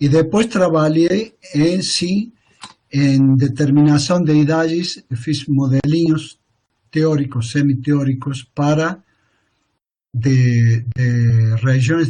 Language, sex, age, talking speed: Portuguese, male, 50-69, 85 wpm